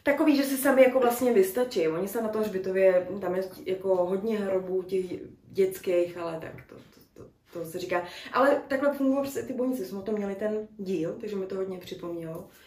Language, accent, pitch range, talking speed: Czech, native, 180-230 Hz, 205 wpm